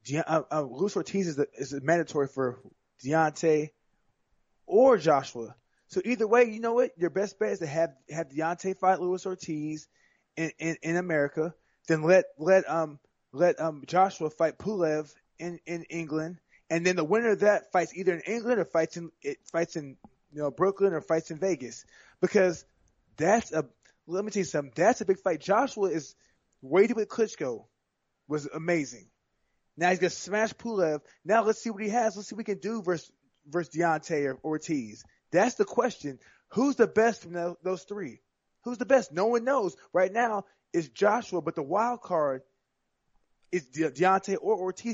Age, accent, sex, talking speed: 20-39, American, male, 185 wpm